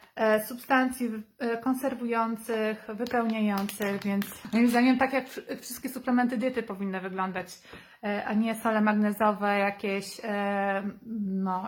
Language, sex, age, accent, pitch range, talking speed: Polish, female, 30-49, native, 210-250 Hz, 100 wpm